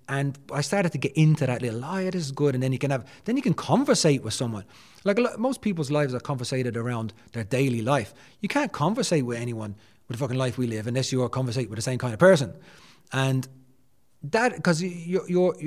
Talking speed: 240 wpm